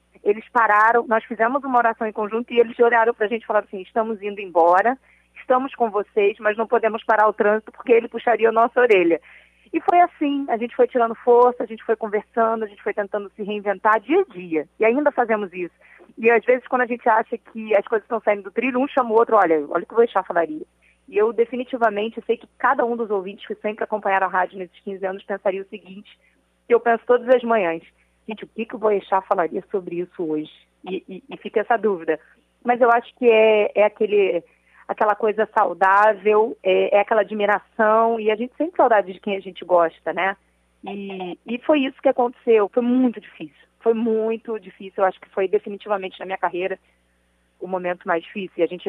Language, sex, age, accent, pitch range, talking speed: Portuguese, female, 20-39, Brazilian, 195-235 Hz, 225 wpm